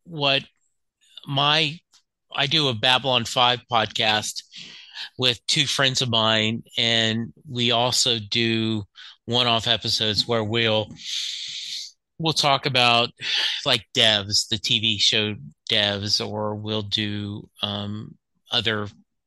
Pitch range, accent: 110-125 Hz, American